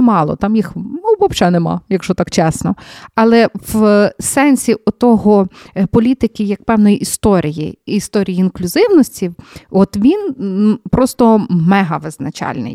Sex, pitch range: female, 190-240 Hz